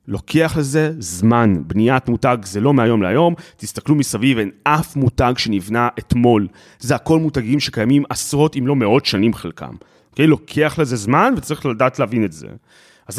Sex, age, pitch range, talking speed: male, 30-49, 110-155 Hz, 170 wpm